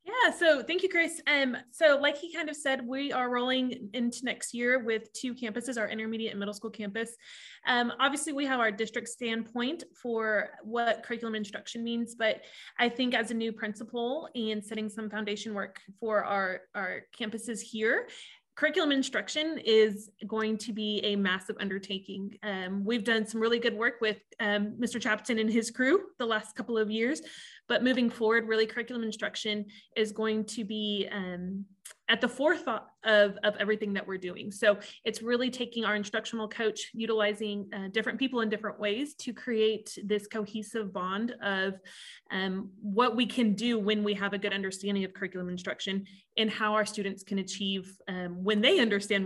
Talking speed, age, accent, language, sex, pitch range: 180 wpm, 20-39, American, English, female, 205-240 Hz